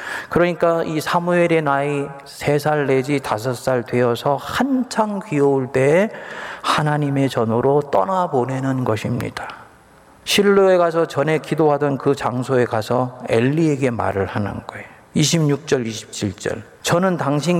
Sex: male